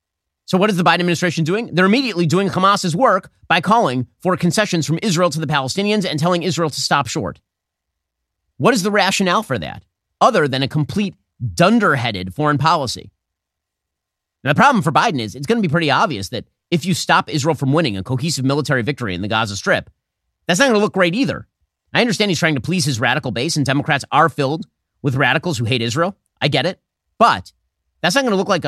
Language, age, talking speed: English, 30-49, 215 wpm